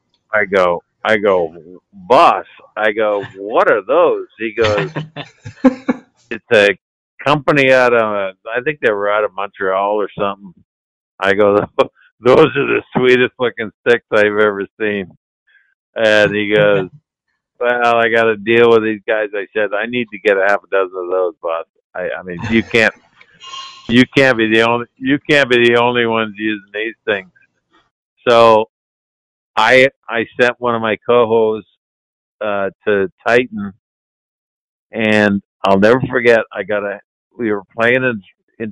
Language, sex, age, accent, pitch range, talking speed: English, male, 50-69, American, 100-120 Hz, 160 wpm